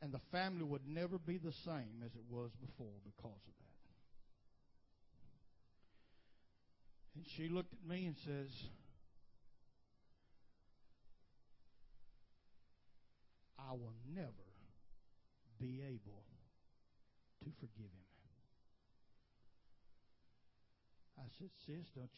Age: 60-79